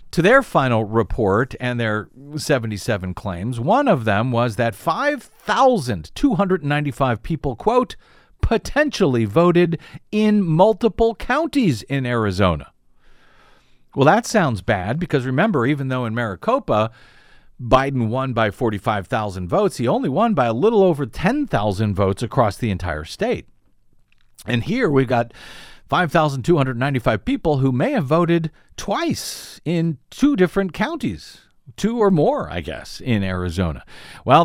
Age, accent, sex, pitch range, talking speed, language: 50-69, American, male, 110-170 Hz, 130 wpm, English